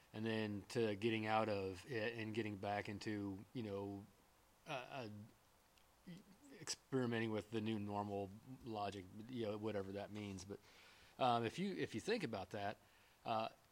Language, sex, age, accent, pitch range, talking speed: English, male, 30-49, American, 105-120 Hz, 155 wpm